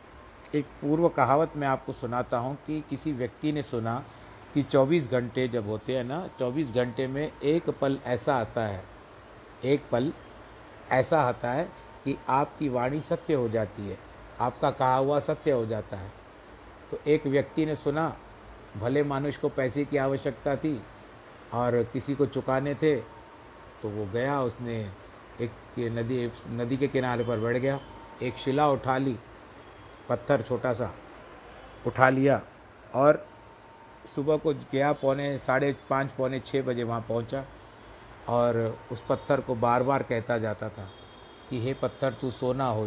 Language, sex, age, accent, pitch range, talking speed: Hindi, male, 50-69, native, 115-135 Hz, 155 wpm